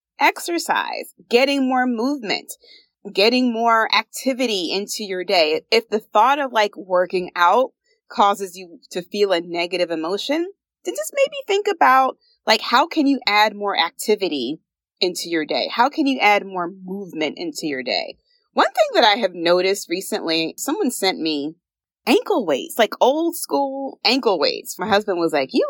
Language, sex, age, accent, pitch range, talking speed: English, female, 30-49, American, 175-280 Hz, 165 wpm